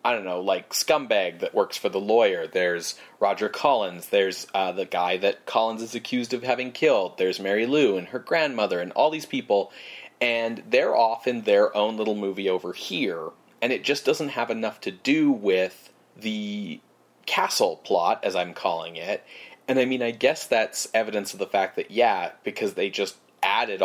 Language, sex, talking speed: English, male, 190 wpm